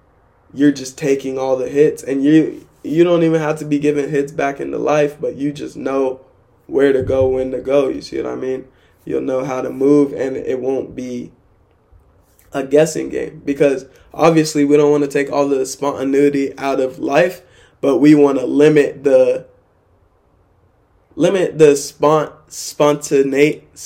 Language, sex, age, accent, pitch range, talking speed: English, male, 20-39, American, 130-150 Hz, 170 wpm